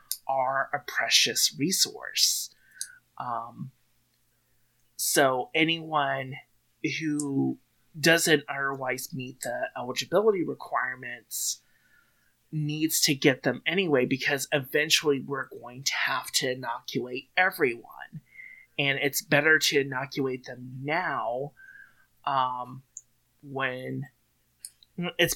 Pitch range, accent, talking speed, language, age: 125-155 Hz, American, 90 wpm, English, 30-49